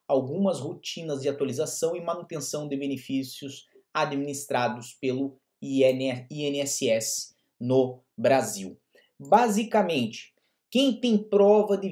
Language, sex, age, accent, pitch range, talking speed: Portuguese, male, 20-39, Brazilian, 135-190 Hz, 90 wpm